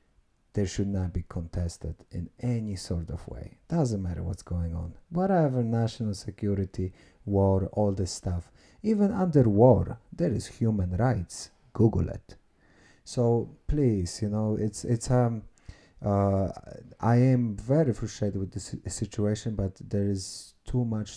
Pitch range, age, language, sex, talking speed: 95-110 Hz, 30-49, English, male, 145 wpm